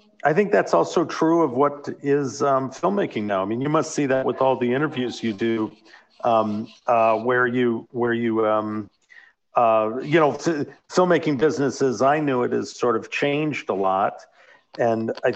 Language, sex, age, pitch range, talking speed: English, male, 50-69, 110-140 Hz, 180 wpm